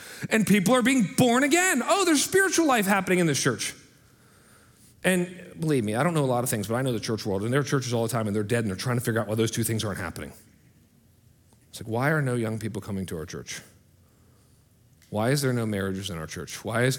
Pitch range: 110-155 Hz